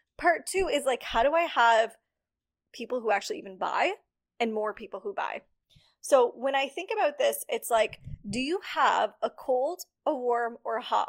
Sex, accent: female, American